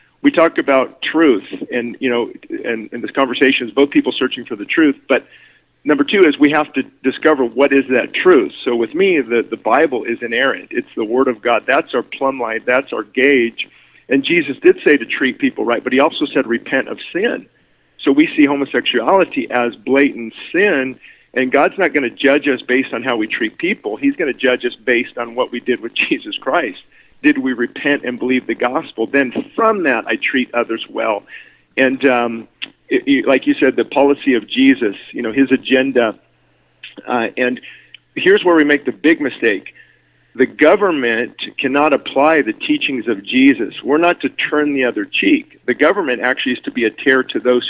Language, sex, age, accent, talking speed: English, male, 50-69, American, 205 wpm